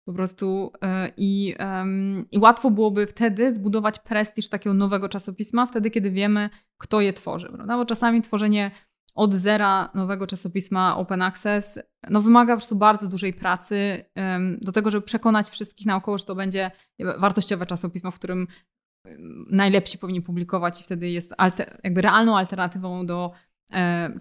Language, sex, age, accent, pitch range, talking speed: Polish, female, 20-39, native, 180-210 Hz, 160 wpm